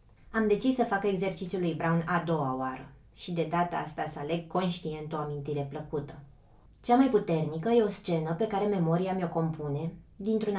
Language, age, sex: Romanian, 20-39, female